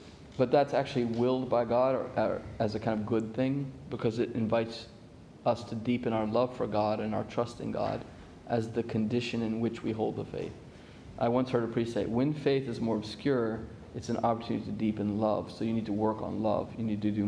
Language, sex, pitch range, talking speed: English, male, 105-120 Hz, 230 wpm